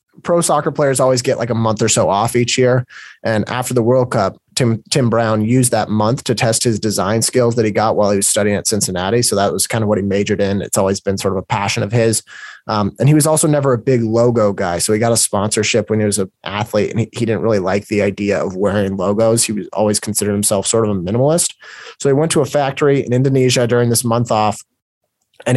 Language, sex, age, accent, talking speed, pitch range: English, male, 30-49, American, 255 wpm, 105-125 Hz